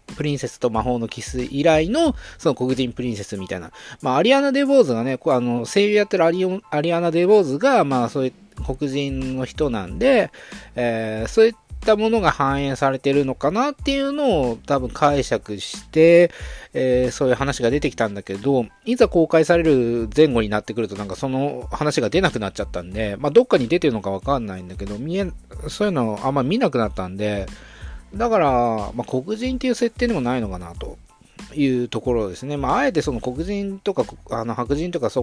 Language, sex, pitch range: Japanese, male, 110-180 Hz